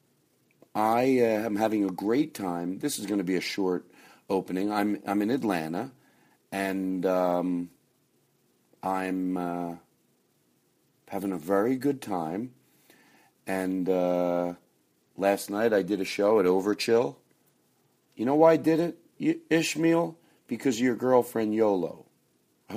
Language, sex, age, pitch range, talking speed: English, male, 40-59, 90-125 Hz, 130 wpm